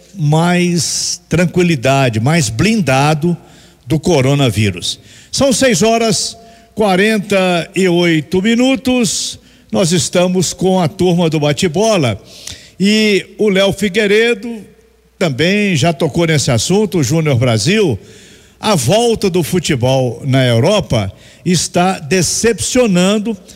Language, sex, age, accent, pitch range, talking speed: Portuguese, male, 50-69, Brazilian, 145-205 Hz, 100 wpm